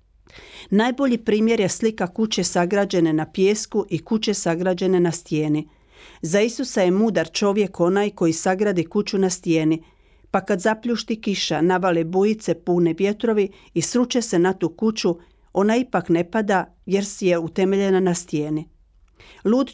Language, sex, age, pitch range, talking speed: Croatian, female, 50-69, 170-210 Hz, 150 wpm